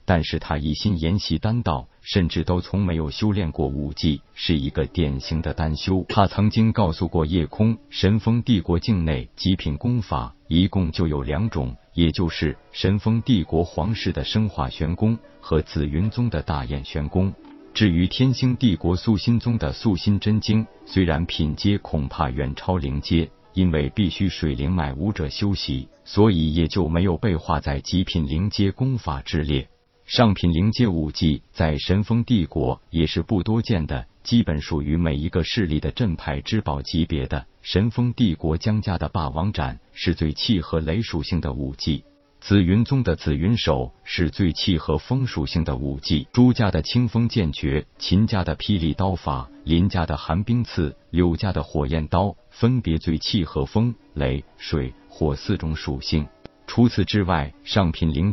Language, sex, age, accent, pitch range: Chinese, male, 50-69, native, 75-105 Hz